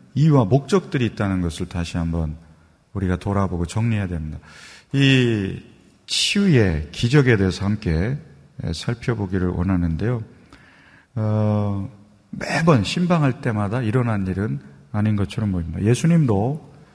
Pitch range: 95-135 Hz